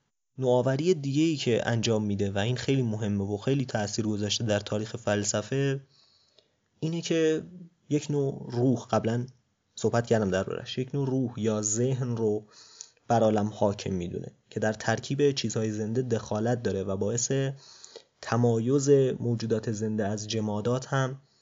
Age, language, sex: 30-49, Persian, male